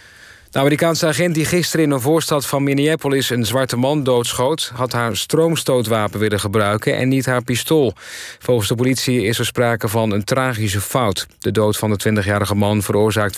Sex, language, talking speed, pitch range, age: male, Dutch, 180 wpm, 110-140 Hz, 40-59